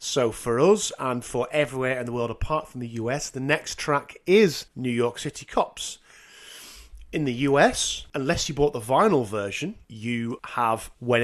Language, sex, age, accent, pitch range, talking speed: English, male, 30-49, British, 110-130 Hz, 175 wpm